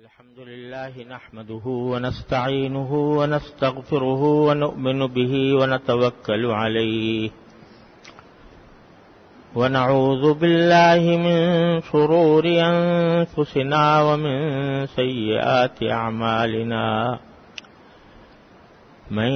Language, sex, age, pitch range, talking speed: English, male, 50-69, 125-155 Hz, 55 wpm